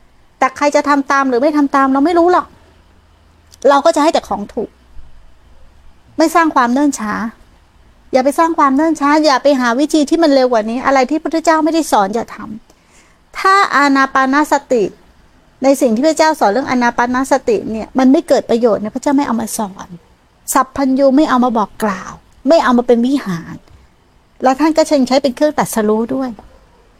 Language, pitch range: Thai, 225-290 Hz